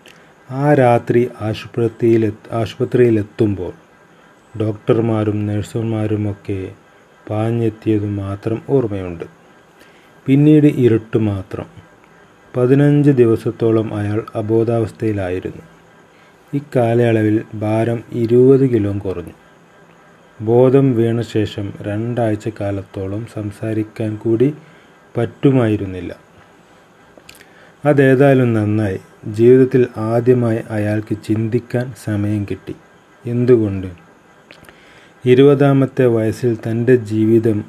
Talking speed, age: 65 wpm, 30-49